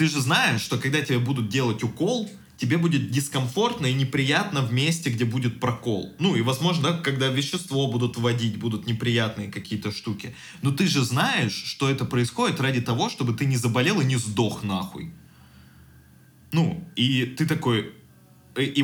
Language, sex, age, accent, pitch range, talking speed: Russian, male, 20-39, native, 115-145 Hz, 165 wpm